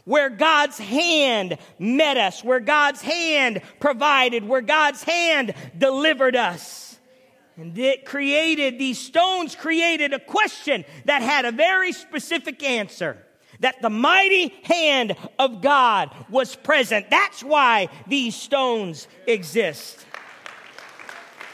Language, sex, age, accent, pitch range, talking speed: English, male, 40-59, American, 255-310 Hz, 115 wpm